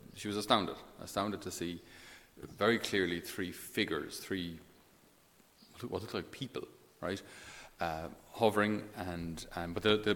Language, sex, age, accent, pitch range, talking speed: English, male, 30-49, Irish, 85-105 Hz, 135 wpm